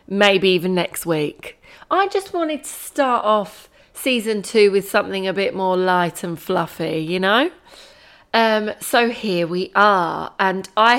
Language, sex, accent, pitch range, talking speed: English, female, British, 185-240 Hz, 160 wpm